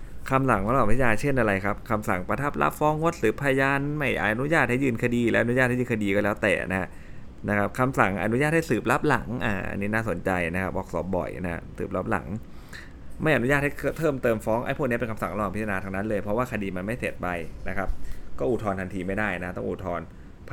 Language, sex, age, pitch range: Thai, male, 20-39, 95-120 Hz